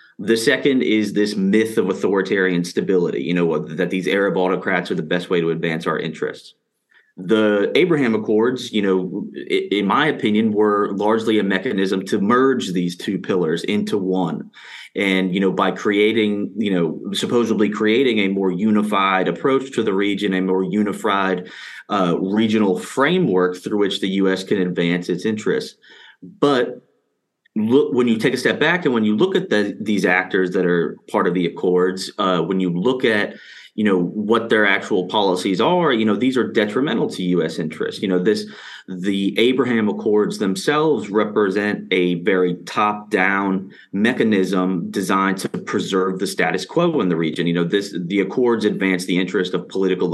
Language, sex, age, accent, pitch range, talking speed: English, male, 30-49, American, 90-105 Hz, 170 wpm